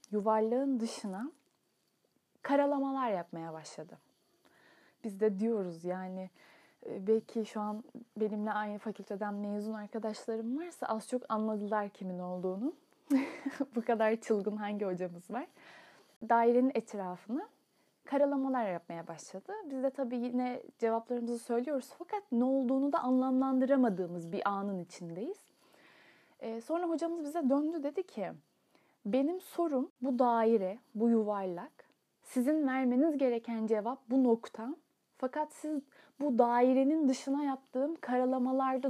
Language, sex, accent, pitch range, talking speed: Turkish, female, native, 215-280 Hz, 115 wpm